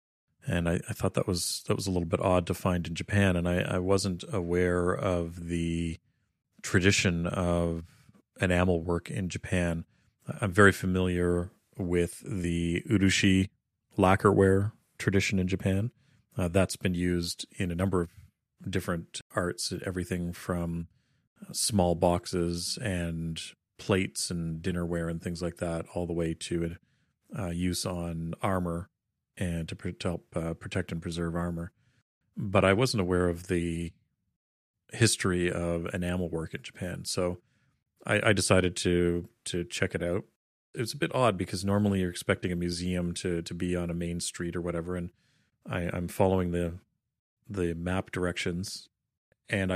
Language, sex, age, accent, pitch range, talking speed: English, male, 40-59, American, 85-95 Hz, 155 wpm